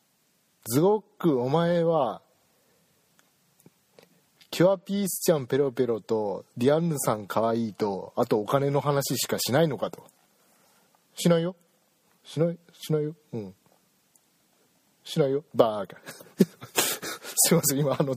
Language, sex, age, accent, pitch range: Japanese, male, 40-59, native, 105-160 Hz